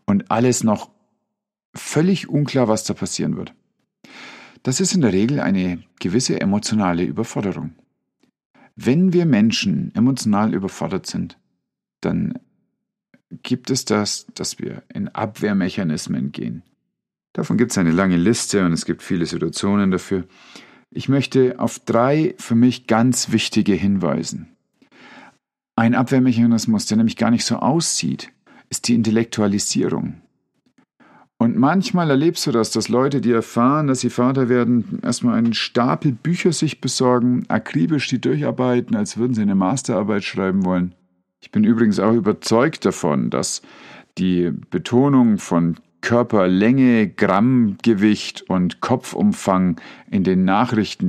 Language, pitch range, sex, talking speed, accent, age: German, 100-155 Hz, male, 130 wpm, German, 50-69